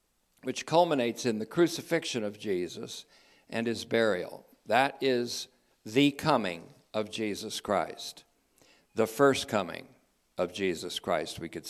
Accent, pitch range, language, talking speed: American, 110-140 Hz, English, 130 wpm